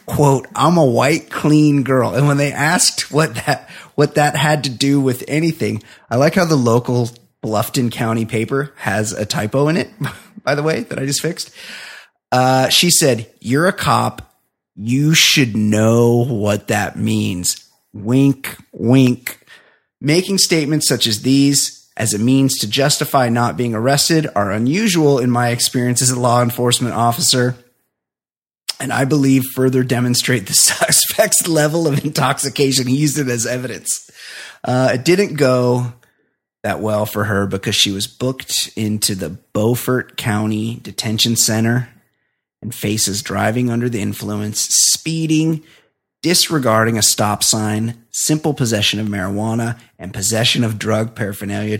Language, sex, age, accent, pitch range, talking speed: English, male, 30-49, American, 110-140 Hz, 150 wpm